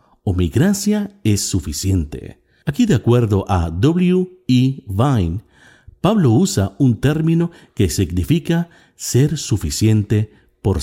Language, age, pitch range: Spanish, 50-69, 95-145 Hz